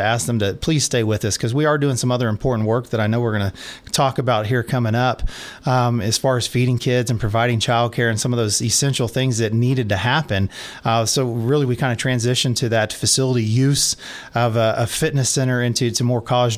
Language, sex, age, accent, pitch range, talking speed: English, male, 30-49, American, 110-135 Hz, 235 wpm